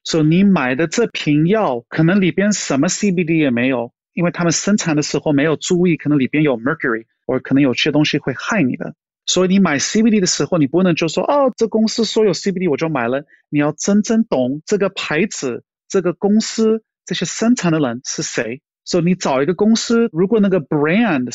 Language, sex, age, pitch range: Chinese, male, 30-49, 135-185 Hz